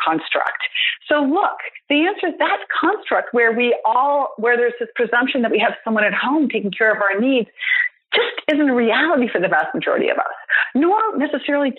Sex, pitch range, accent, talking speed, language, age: female, 205-285 Hz, American, 195 wpm, English, 40-59